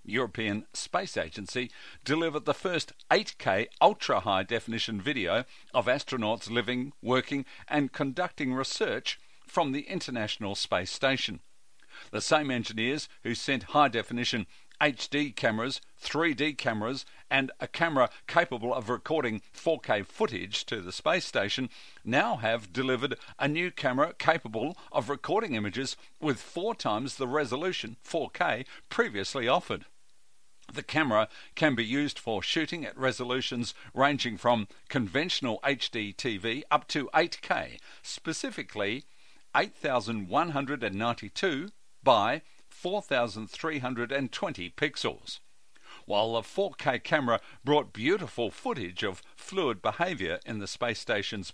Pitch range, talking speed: 110-145 Hz, 115 wpm